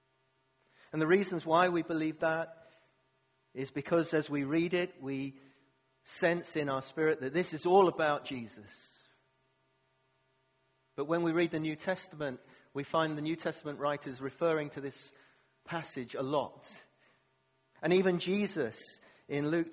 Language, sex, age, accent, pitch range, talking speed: English, male, 40-59, British, 125-155 Hz, 145 wpm